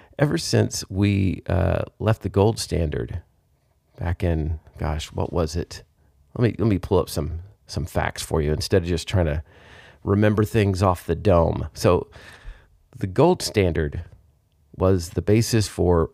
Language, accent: English, American